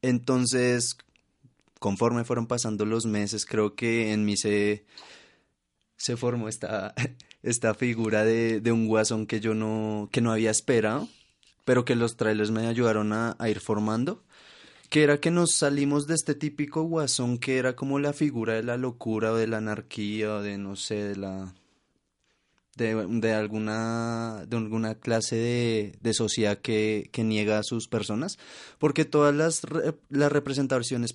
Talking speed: 160 wpm